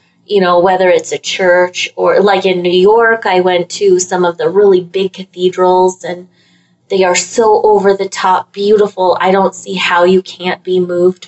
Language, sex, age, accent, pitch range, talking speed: English, female, 20-39, American, 180-200 Hz, 190 wpm